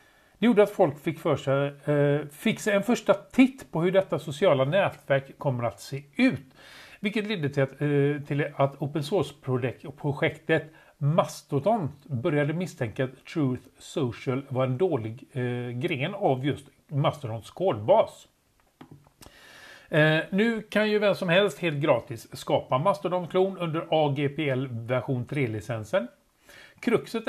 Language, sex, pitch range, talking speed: Swedish, male, 135-185 Hz, 140 wpm